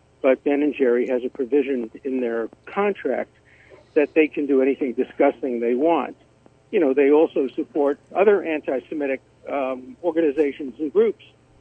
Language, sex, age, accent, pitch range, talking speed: English, male, 60-79, American, 130-180 Hz, 150 wpm